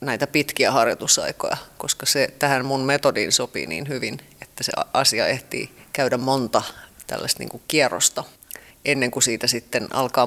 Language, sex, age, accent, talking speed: Finnish, female, 30-49, native, 145 wpm